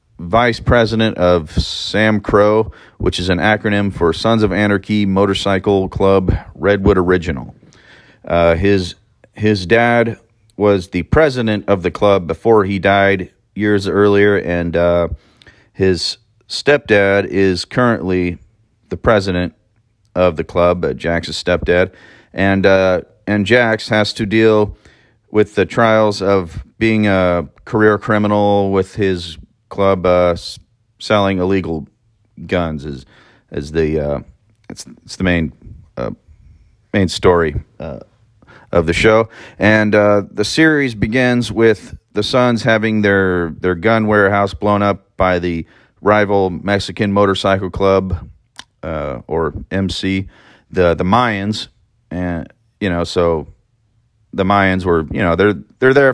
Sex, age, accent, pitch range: male, 40-59, American, 90-110 Hz